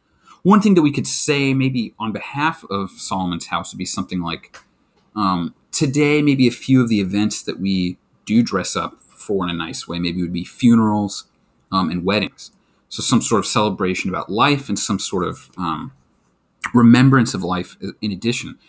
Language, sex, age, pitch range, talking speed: English, male, 30-49, 100-140 Hz, 185 wpm